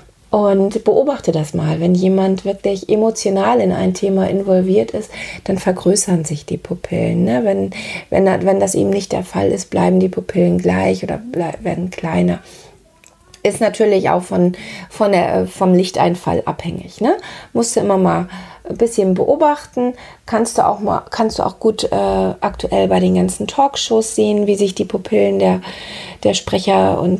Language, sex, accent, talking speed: German, female, German, 145 wpm